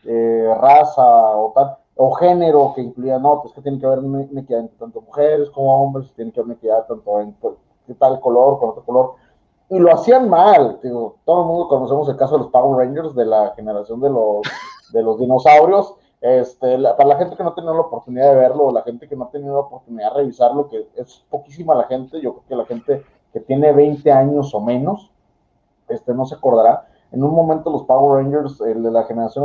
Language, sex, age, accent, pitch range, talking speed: Spanish, male, 30-49, Mexican, 125-160 Hz, 220 wpm